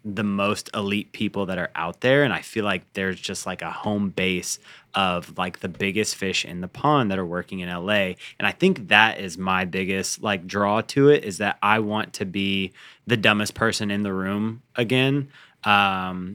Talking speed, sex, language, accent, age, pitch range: 205 wpm, male, English, American, 20-39, 100-115 Hz